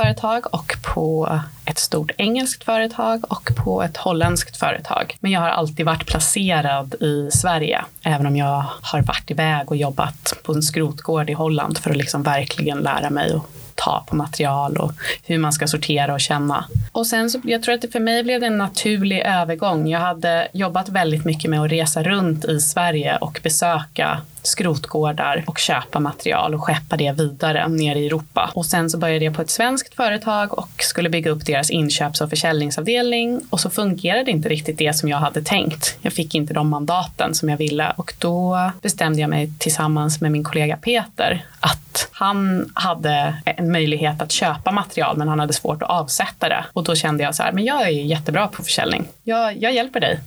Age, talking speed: 20-39, 195 wpm